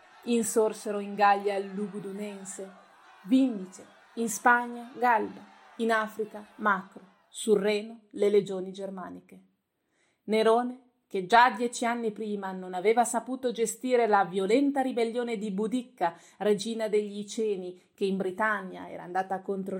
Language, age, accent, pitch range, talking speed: Italian, 30-49, native, 190-230 Hz, 125 wpm